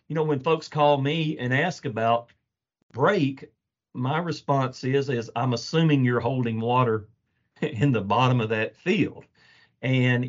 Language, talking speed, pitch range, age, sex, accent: English, 150 wpm, 105-130 Hz, 40-59, male, American